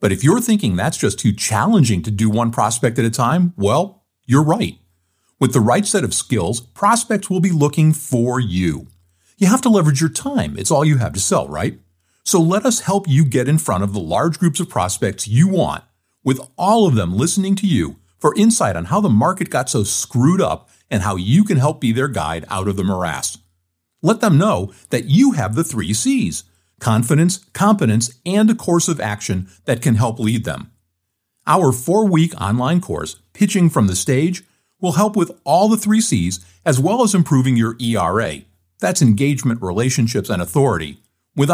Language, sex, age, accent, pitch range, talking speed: English, male, 50-69, American, 105-175 Hz, 195 wpm